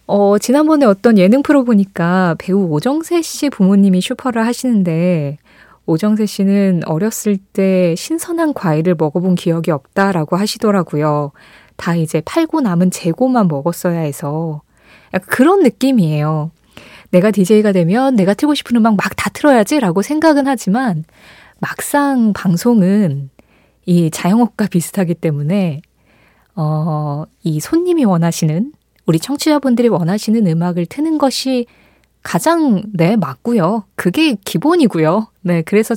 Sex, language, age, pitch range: female, Korean, 20-39, 170-240 Hz